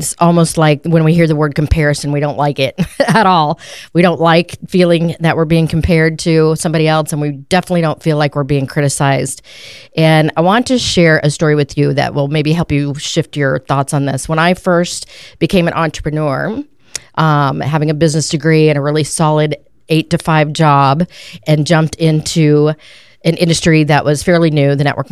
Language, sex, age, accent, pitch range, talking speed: English, female, 40-59, American, 145-180 Hz, 200 wpm